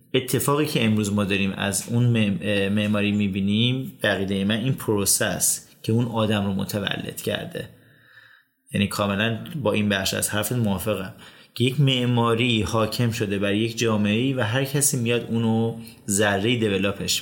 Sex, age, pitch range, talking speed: male, 30-49, 105-115 Hz, 150 wpm